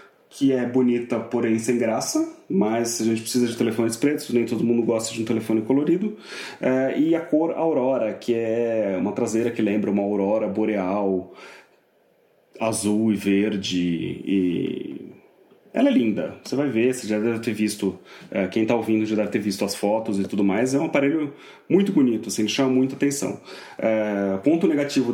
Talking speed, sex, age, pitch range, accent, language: 175 wpm, male, 30-49, 105-130 Hz, Brazilian, English